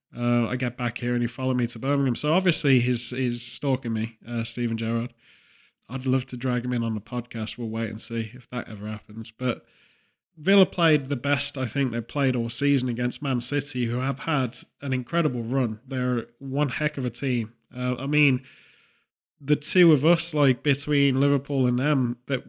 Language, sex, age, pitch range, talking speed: English, male, 20-39, 120-145 Hz, 205 wpm